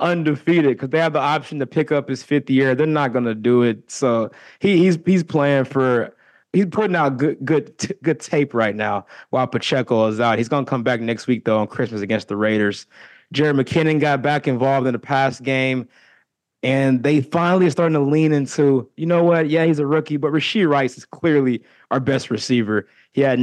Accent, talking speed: American, 220 wpm